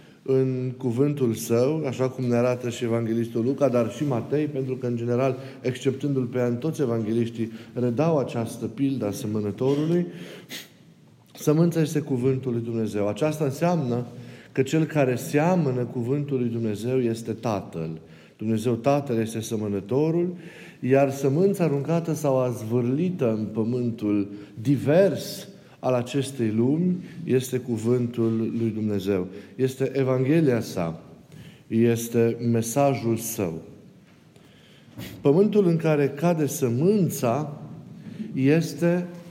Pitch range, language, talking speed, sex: 115-150 Hz, Romanian, 115 wpm, male